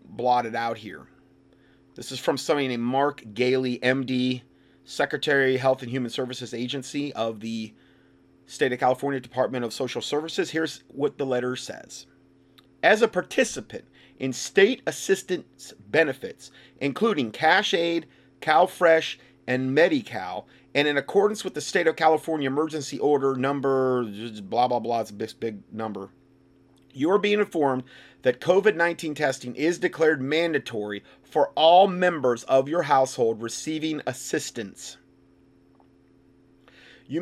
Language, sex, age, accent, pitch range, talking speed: English, male, 30-49, American, 125-160 Hz, 130 wpm